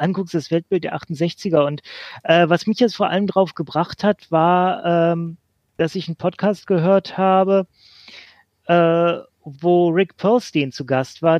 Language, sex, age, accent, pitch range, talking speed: German, male, 30-49, German, 160-200 Hz, 160 wpm